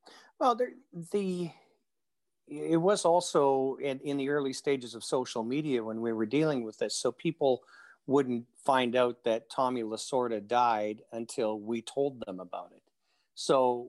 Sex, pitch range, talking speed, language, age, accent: male, 120-155 Hz, 155 wpm, English, 40-59, American